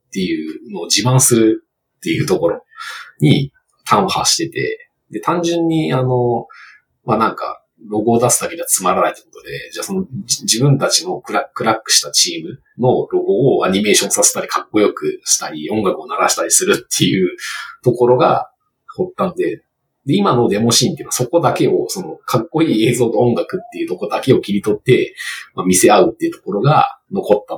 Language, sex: Japanese, male